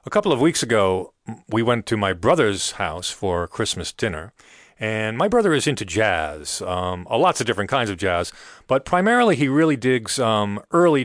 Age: 40-59